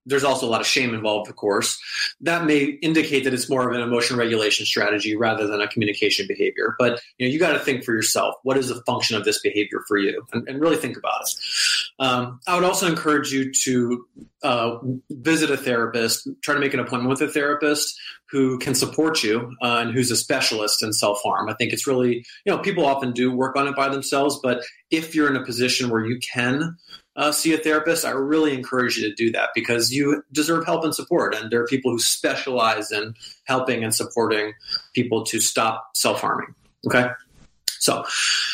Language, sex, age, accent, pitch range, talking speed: English, male, 30-49, American, 120-155 Hz, 210 wpm